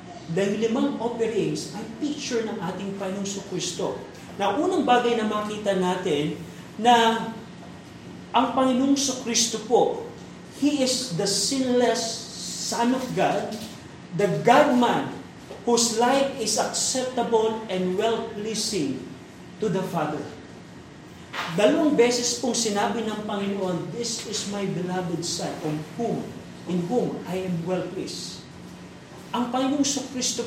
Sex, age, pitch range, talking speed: male, 40-59, 195-240 Hz, 115 wpm